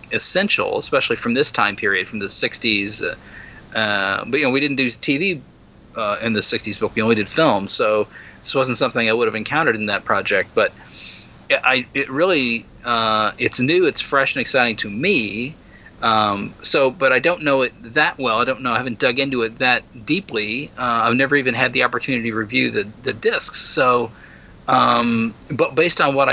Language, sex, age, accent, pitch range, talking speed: English, male, 40-59, American, 115-135 Hz, 205 wpm